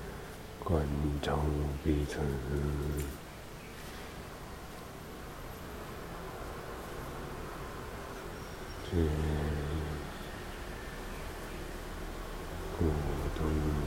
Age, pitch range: 60-79, 75-85 Hz